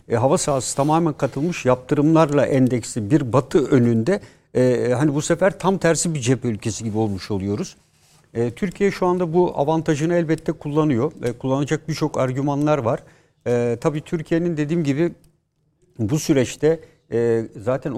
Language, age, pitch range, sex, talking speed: Turkish, 60-79, 120-160 Hz, male, 145 wpm